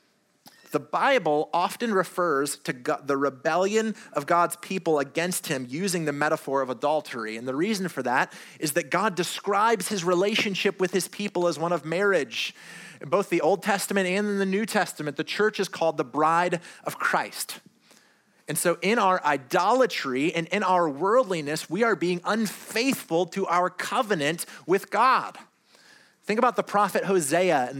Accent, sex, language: American, male, English